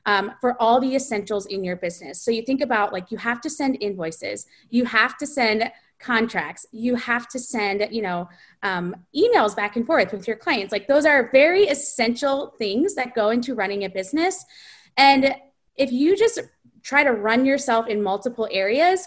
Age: 20-39